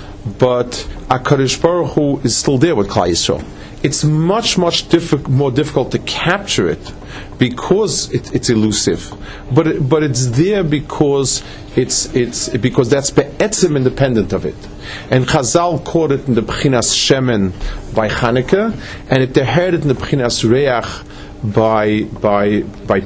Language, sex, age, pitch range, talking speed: English, male, 40-59, 105-145 Hz, 145 wpm